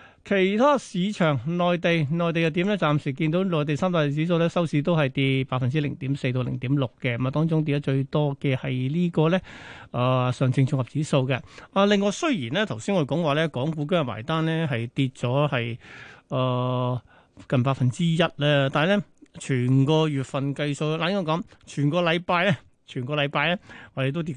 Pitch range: 135-170 Hz